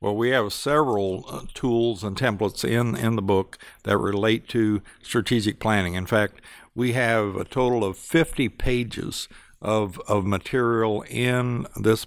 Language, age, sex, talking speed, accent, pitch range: English, 60-79, male, 155 wpm, American, 105-135 Hz